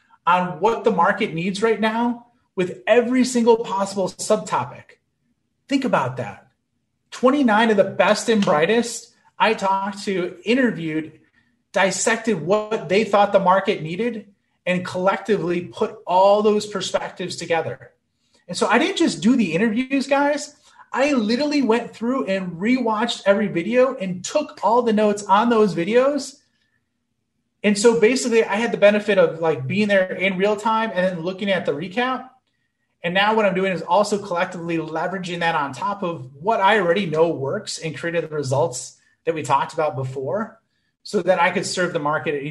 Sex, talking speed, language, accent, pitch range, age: male, 170 wpm, English, American, 170-225 Hz, 30-49